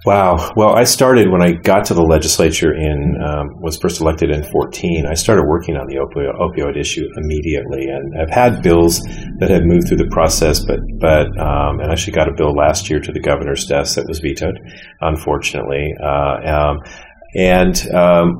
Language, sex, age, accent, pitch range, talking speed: English, male, 40-59, American, 75-85 Hz, 190 wpm